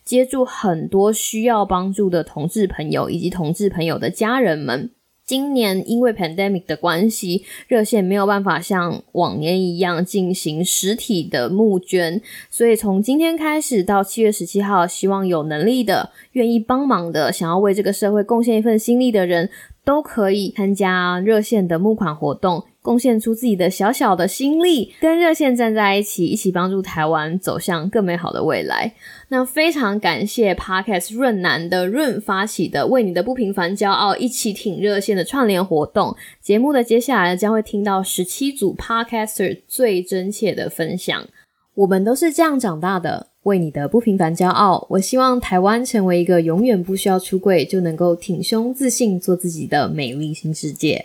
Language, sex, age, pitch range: Chinese, female, 20-39, 180-230 Hz